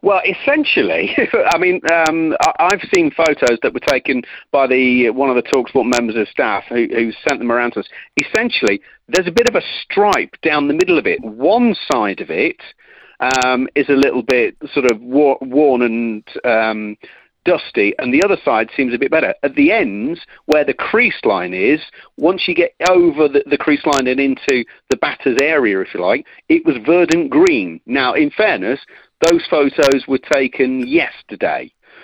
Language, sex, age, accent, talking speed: English, male, 40-59, British, 185 wpm